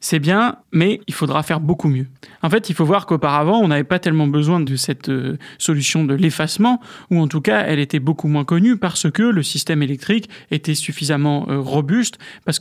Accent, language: French, French